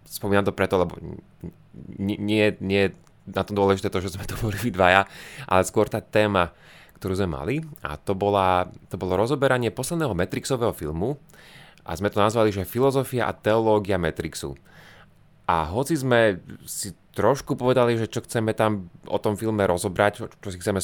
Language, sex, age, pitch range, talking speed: Slovak, male, 30-49, 95-120 Hz, 165 wpm